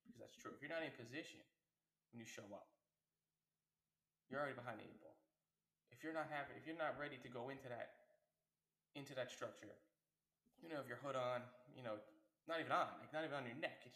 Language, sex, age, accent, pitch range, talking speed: English, male, 20-39, American, 115-140 Hz, 220 wpm